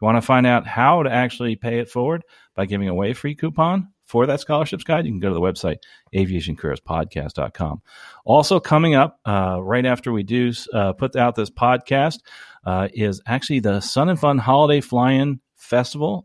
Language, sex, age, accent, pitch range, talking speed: English, male, 40-59, American, 100-135 Hz, 195 wpm